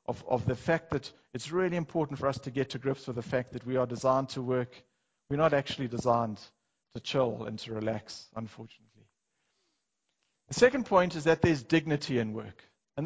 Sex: male